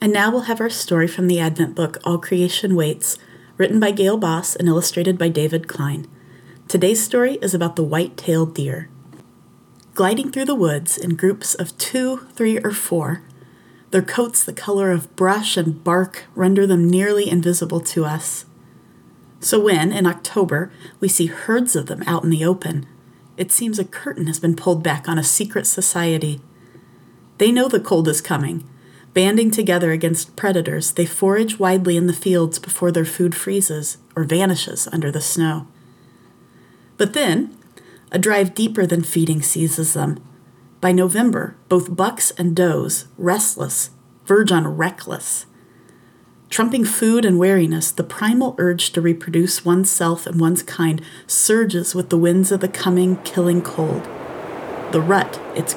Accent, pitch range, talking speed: American, 165-195 Hz, 160 wpm